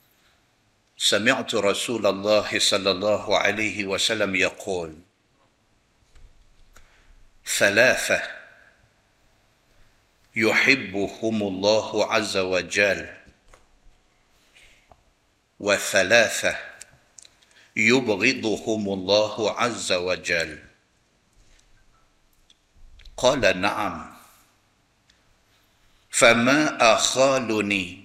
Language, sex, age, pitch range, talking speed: Malay, male, 50-69, 100-115 Hz, 45 wpm